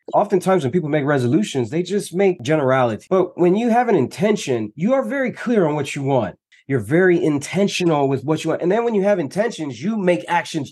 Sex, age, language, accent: male, 30-49, English, American